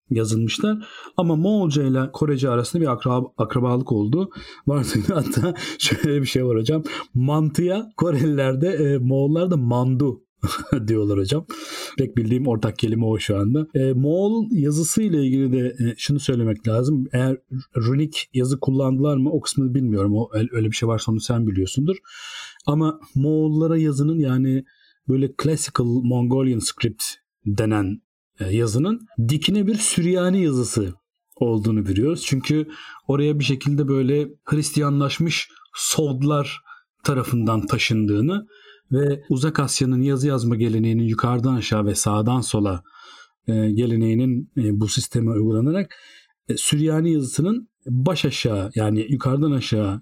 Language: Turkish